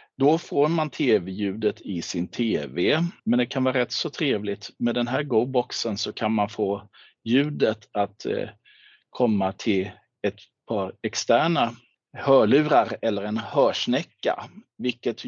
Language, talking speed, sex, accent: Swedish, 135 wpm, male, native